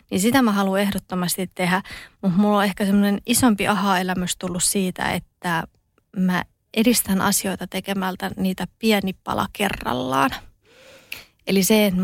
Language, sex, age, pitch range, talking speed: Finnish, female, 20-39, 185-215 Hz, 140 wpm